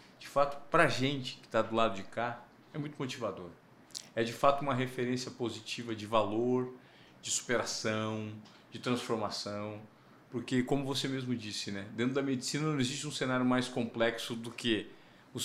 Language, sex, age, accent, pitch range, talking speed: Portuguese, male, 40-59, Brazilian, 115-155 Hz, 170 wpm